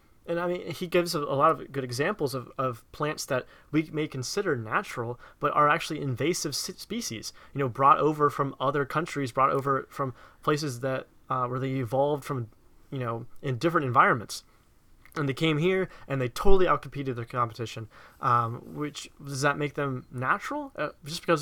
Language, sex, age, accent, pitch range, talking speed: English, male, 20-39, American, 130-155 Hz, 180 wpm